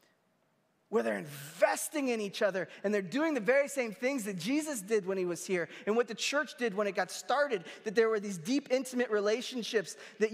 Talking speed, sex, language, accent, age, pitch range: 215 wpm, male, English, American, 20-39, 190-235 Hz